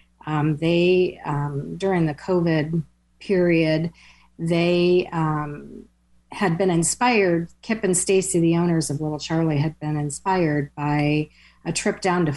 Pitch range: 155-185 Hz